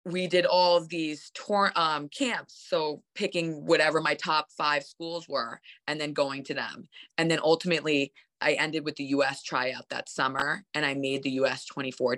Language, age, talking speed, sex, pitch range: English, 20-39, 195 wpm, female, 145-180 Hz